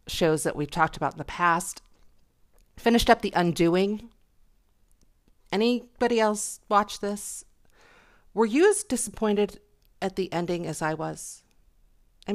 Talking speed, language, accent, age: 130 wpm, English, American, 40-59